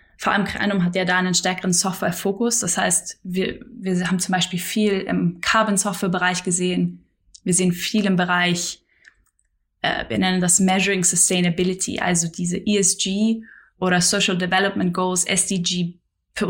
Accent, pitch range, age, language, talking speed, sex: German, 180-205 Hz, 10-29, German, 145 wpm, female